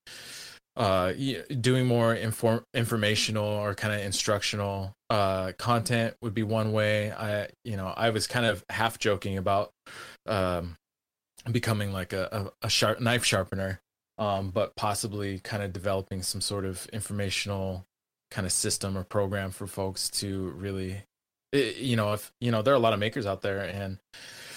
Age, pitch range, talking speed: 20-39, 95-110 Hz, 165 wpm